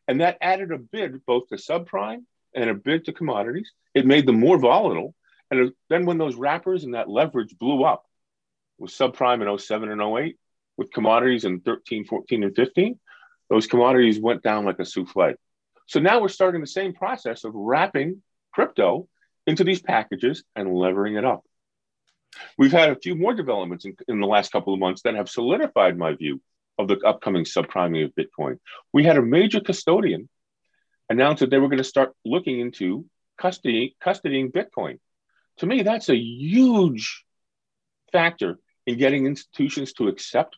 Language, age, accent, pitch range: English, 40-59, American, 110-185 Hz